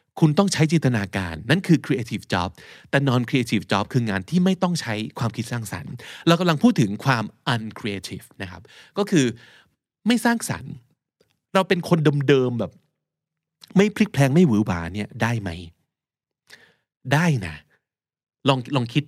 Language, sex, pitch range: Thai, male, 110-155 Hz